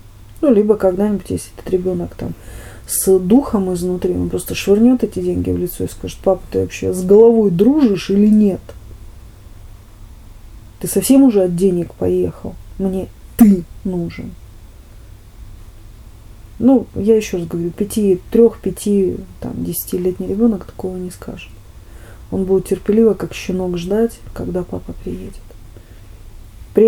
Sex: female